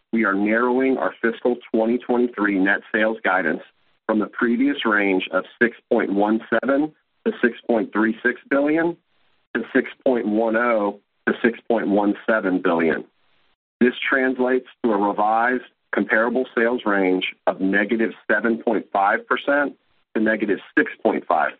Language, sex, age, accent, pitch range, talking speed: English, male, 40-59, American, 100-130 Hz, 155 wpm